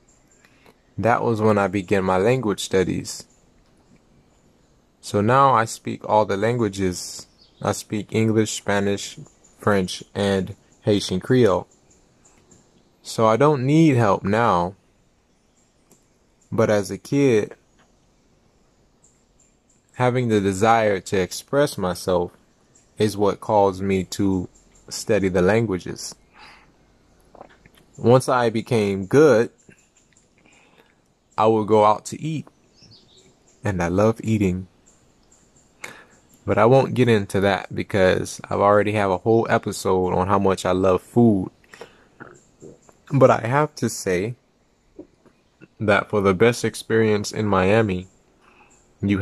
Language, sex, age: English, male, 20-39